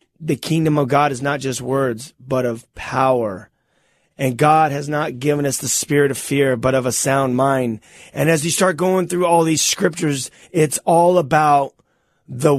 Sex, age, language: male, 30-49, English